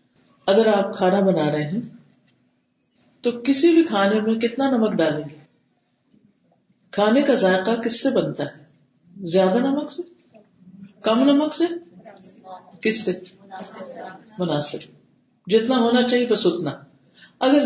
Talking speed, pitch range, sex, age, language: 125 wpm, 185-245 Hz, female, 50-69, Urdu